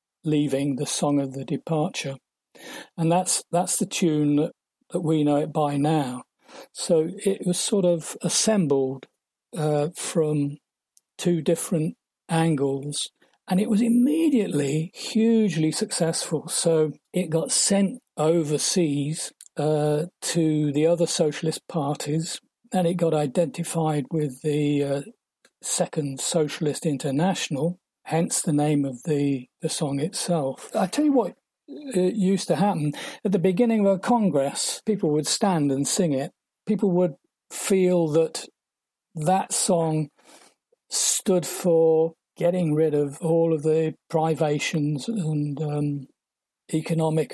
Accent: British